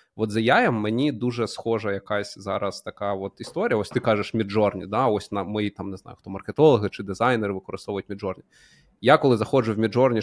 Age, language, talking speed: 20-39, Ukrainian, 195 wpm